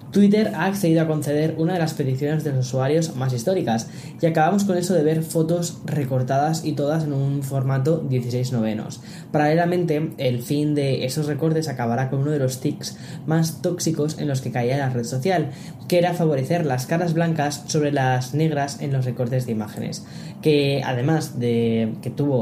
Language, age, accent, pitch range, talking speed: Spanish, 10-29, Spanish, 135-165 Hz, 185 wpm